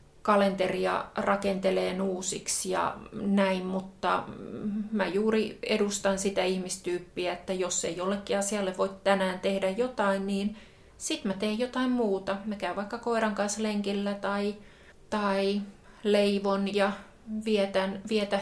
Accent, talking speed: native, 125 wpm